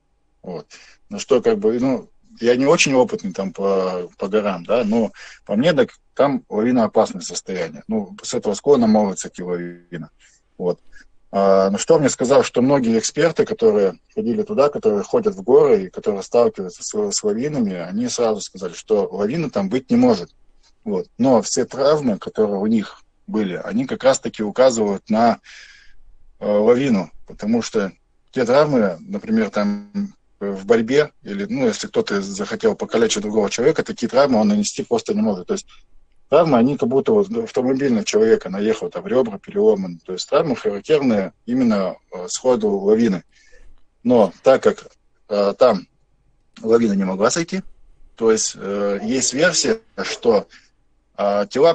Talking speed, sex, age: 160 wpm, male, 20-39